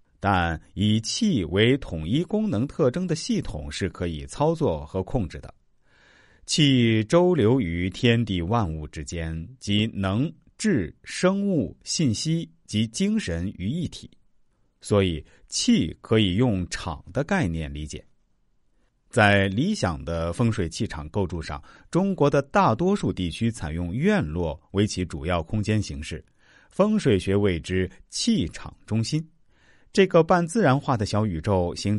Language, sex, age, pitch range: Chinese, male, 50-69, 85-135 Hz